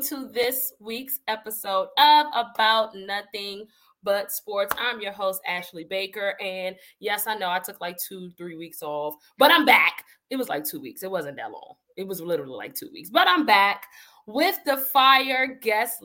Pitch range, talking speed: 185-260 Hz, 185 wpm